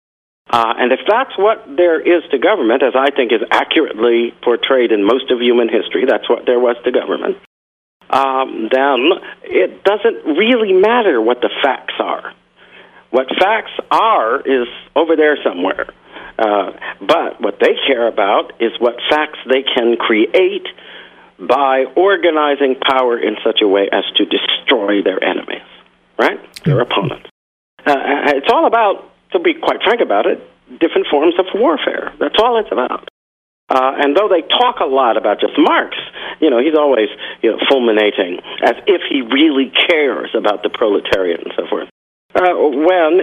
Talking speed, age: 165 wpm, 50-69